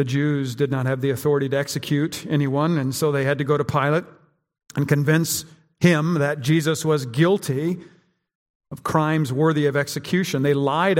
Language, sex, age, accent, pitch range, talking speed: English, male, 50-69, American, 135-160 Hz, 175 wpm